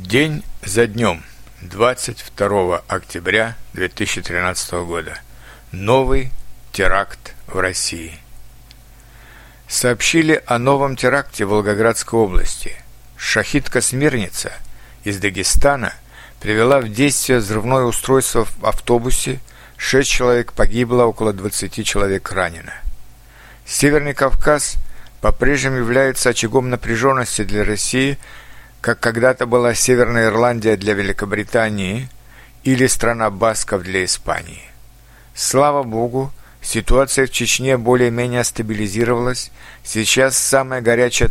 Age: 60-79